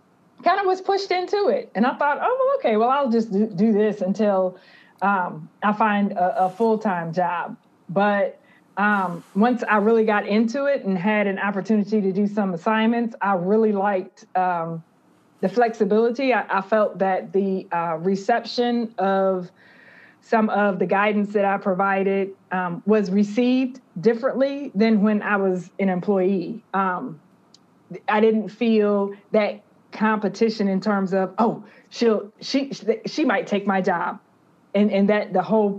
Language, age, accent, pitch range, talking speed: English, 20-39, American, 195-225 Hz, 160 wpm